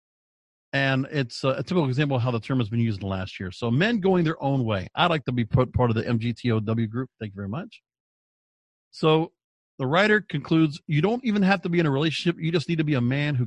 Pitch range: 135-220 Hz